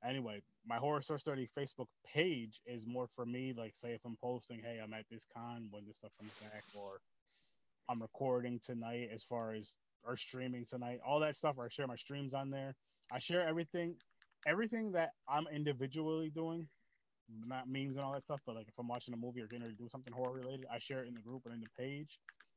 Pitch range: 115-135 Hz